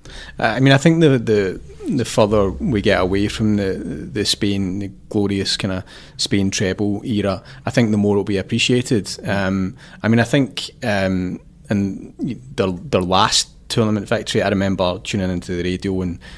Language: English